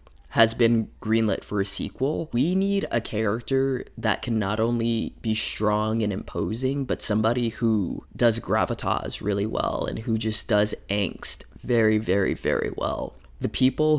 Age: 20-39